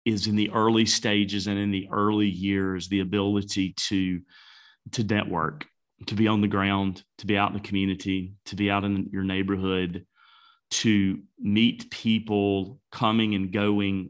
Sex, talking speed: male, 160 wpm